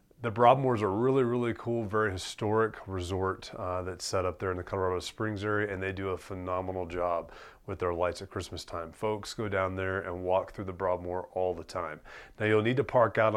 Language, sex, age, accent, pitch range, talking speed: English, male, 30-49, American, 90-110 Hz, 225 wpm